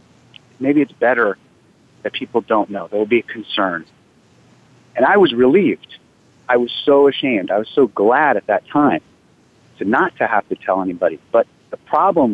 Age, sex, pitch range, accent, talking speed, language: 40-59, male, 100-120 Hz, American, 180 wpm, English